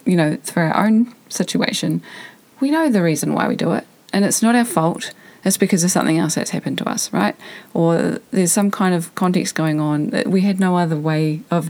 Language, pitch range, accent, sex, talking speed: English, 165-215 Hz, Australian, female, 225 wpm